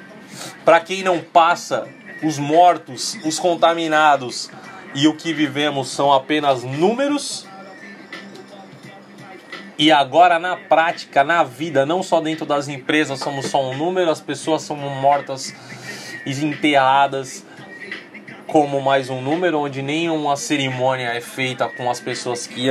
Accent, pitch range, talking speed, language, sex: Brazilian, 145-195 Hz, 130 wpm, Portuguese, male